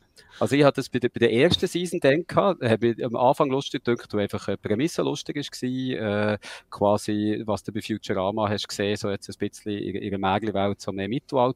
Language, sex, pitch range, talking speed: German, male, 105-125 Hz, 210 wpm